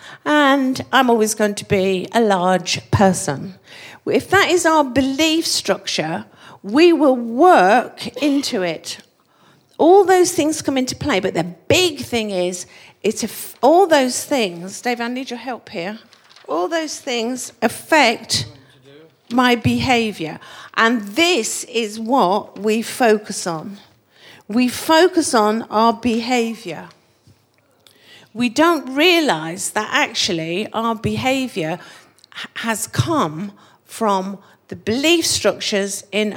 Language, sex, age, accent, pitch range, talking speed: English, female, 50-69, British, 190-275 Hz, 120 wpm